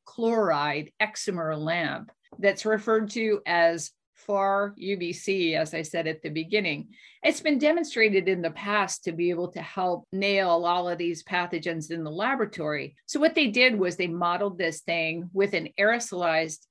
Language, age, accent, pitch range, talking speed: English, 50-69, American, 170-220 Hz, 165 wpm